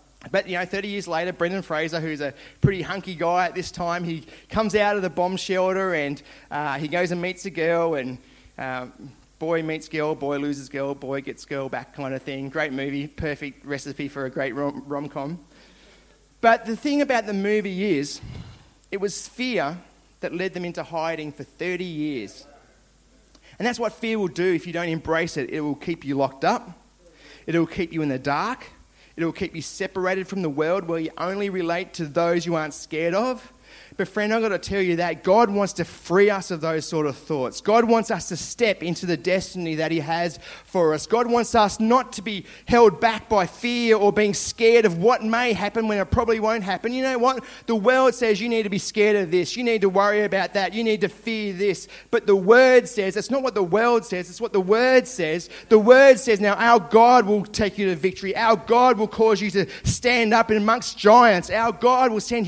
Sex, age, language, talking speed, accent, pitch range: male, 30-49, English, 220 wpm, Australian, 165-220 Hz